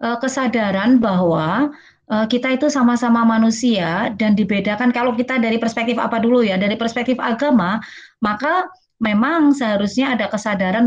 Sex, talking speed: female, 125 wpm